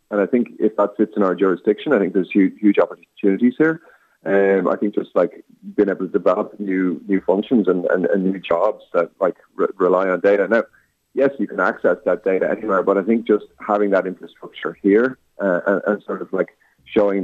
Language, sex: English, male